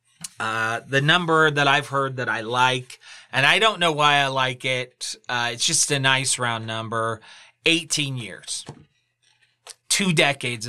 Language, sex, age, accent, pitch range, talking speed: English, male, 30-49, American, 120-145 Hz, 150 wpm